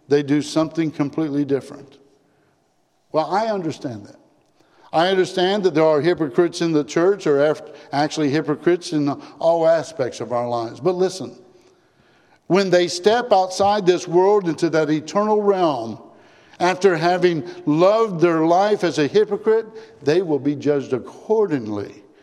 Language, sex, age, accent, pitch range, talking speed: English, male, 60-79, American, 145-185 Hz, 140 wpm